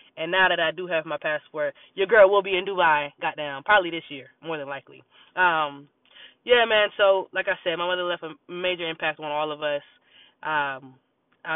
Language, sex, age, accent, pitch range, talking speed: English, female, 20-39, American, 150-195 Hz, 200 wpm